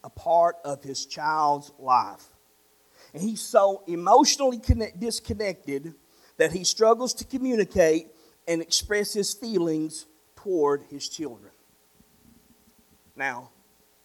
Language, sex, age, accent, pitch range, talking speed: English, male, 40-59, American, 150-215 Hz, 105 wpm